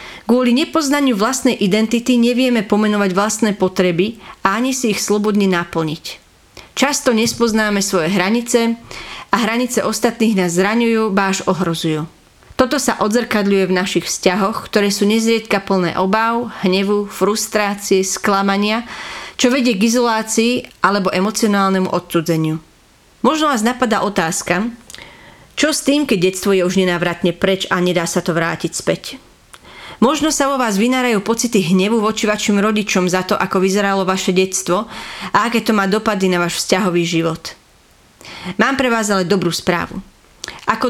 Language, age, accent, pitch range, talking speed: English, 40-59, Czech, 190-230 Hz, 140 wpm